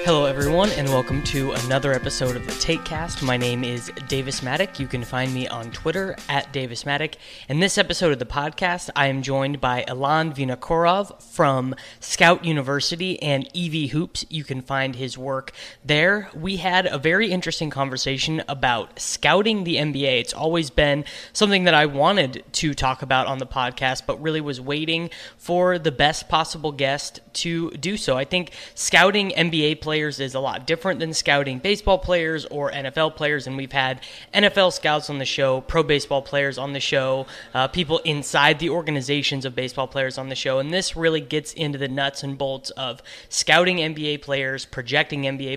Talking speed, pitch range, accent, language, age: 180 wpm, 135-165 Hz, American, English, 20-39